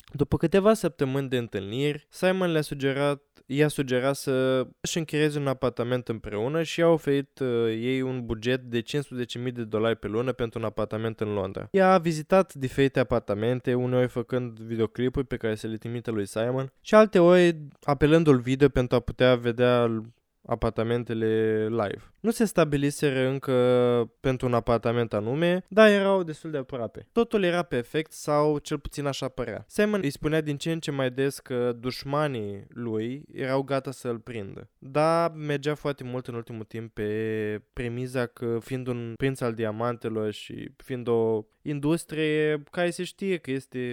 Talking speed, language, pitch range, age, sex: 165 wpm, Romanian, 120-150 Hz, 20-39, male